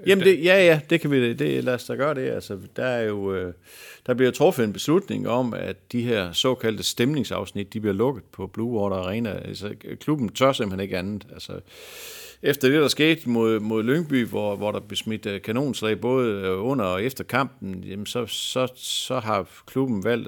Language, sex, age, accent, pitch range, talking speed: Danish, male, 50-69, native, 100-130 Hz, 195 wpm